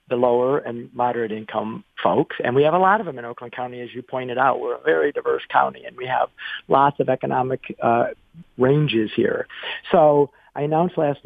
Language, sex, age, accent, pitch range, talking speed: English, male, 50-69, American, 130-180 Hz, 205 wpm